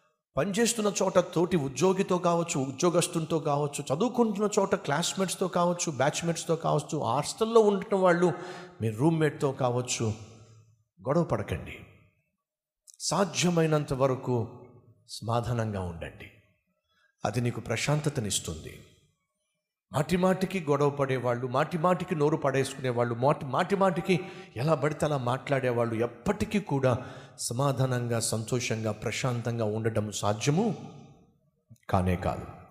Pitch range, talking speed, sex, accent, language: 115-165 Hz, 80 wpm, male, native, Telugu